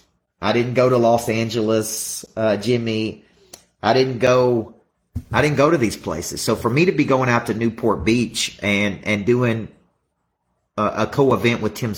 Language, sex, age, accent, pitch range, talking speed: English, male, 40-59, American, 105-135 Hz, 175 wpm